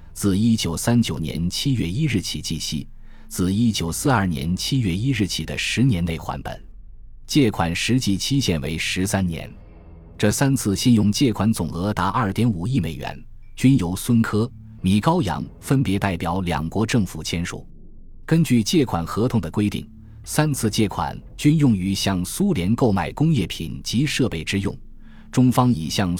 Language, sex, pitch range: Chinese, male, 85-120 Hz